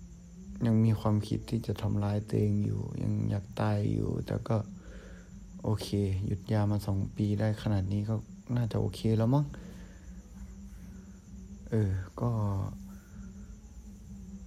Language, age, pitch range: Thai, 60-79, 95-110 Hz